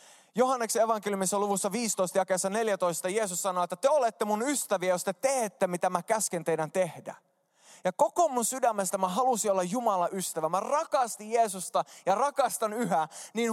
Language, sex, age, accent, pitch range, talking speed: Finnish, male, 20-39, native, 170-225 Hz, 160 wpm